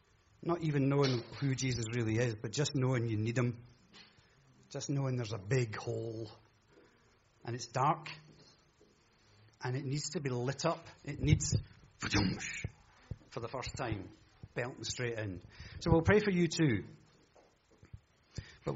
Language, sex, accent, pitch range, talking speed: English, male, British, 125-175 Hz, 145 wpm